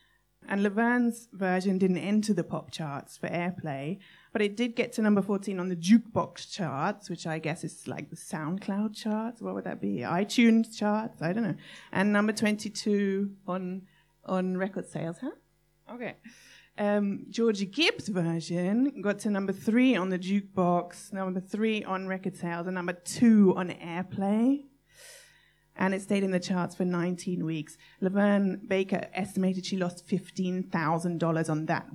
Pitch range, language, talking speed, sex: 170-205 Hz, English, 160 wpm, female